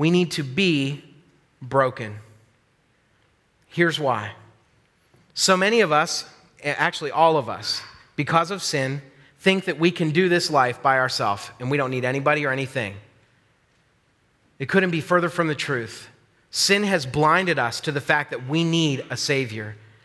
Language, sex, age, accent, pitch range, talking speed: English, male, 30-49, American, 120-155 Hz, 160 wpm